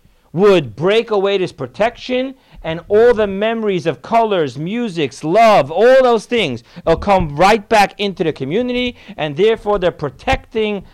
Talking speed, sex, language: 150 wpm, male, English